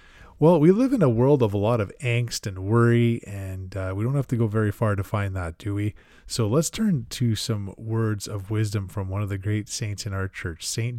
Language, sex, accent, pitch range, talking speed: English, male, American, 100-125 Hz, 245 wpm